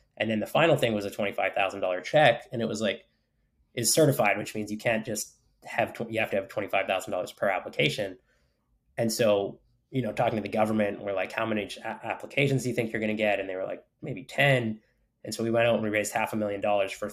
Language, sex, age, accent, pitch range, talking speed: English, male, 20-39, American, 100-120 Hz, 235 wpm